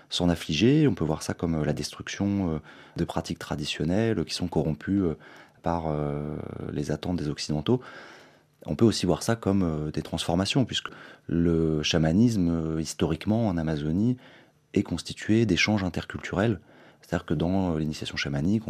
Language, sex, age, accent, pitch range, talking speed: French, male, 30-49, French, 80-105 Hz, 140 wpm